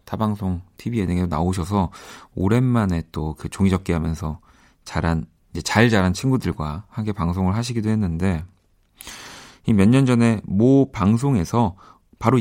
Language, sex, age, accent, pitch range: Korean, male, 40-59, native, 85-120 Hz